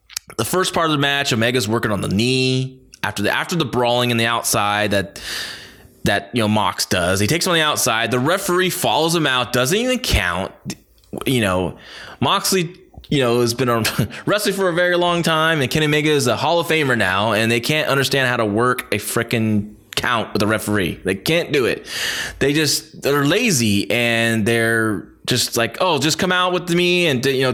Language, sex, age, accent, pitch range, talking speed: English, male, 20-39, American, 115-170 Hz, 210 wpm